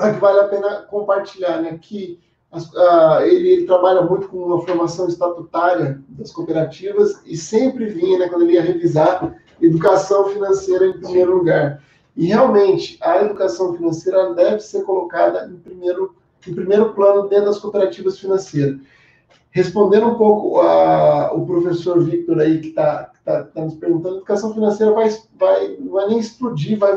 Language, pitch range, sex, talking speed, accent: Portuguese, 165-205 Hz, male, 160 wpm, Brazilian